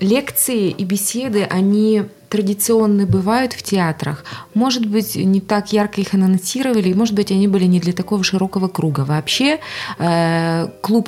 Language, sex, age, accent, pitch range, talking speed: Russian, female, 20-39, native, 175-210 Hz, 140 wpm